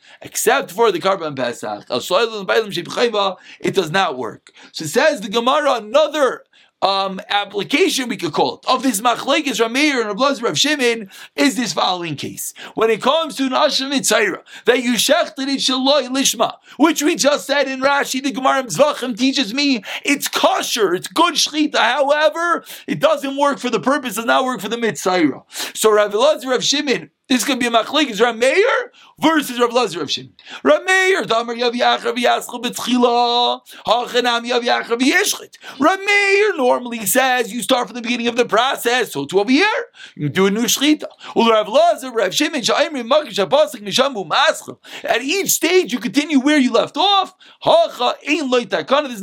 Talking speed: 145 wpm